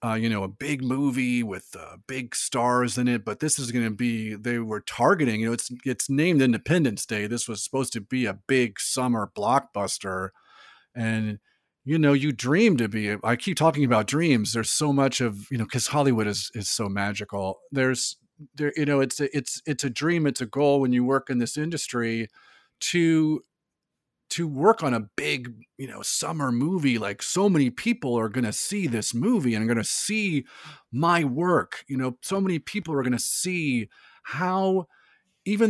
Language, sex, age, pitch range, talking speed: English, male, 40-59, 115-145 Hz, 200 wpm